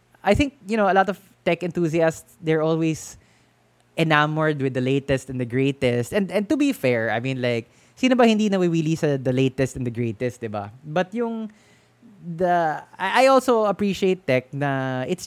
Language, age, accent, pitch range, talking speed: English, 20-39, Filipino, 125-175 Hz, 185 wpm